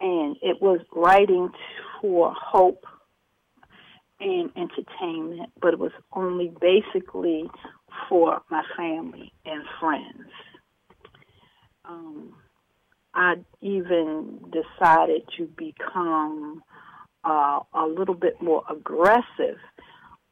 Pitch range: 160-245 Hz